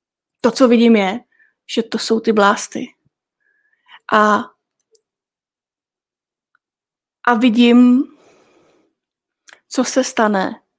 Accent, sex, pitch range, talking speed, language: native, female, 205-230 Hz, 85 wpm, Czech